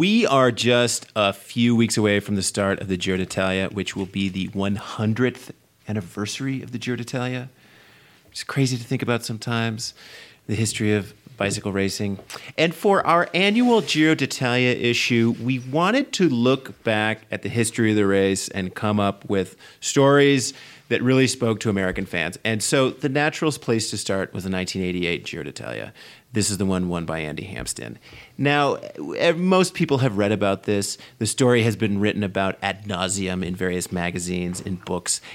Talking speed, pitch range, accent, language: 175 wpm, 100-130 Hz, American, English